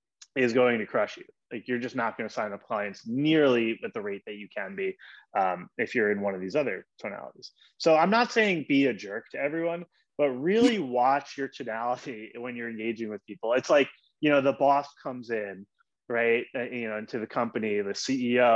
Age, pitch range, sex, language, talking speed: 20-39, 115-175 Hz, male, English, 215 wpm